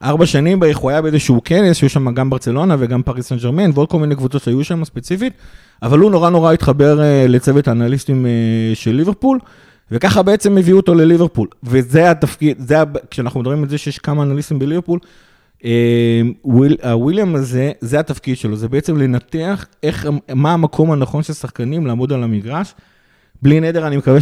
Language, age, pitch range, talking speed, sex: Hebrew, 30-49, 125-155 Hz, 165 wpm, male